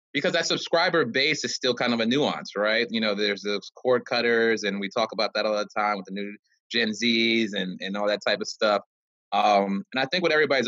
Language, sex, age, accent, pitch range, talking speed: English, male, 20-39, American, 95-115 Hz, 240 wpm